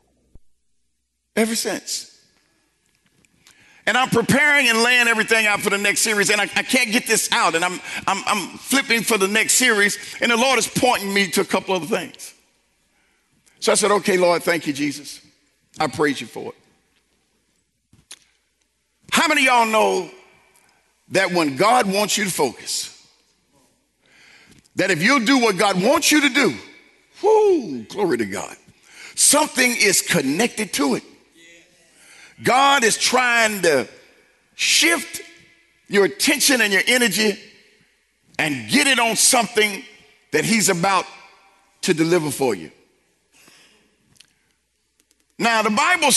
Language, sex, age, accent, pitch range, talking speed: English, male, 50-69, American, 195-255 Hz, 140 wpm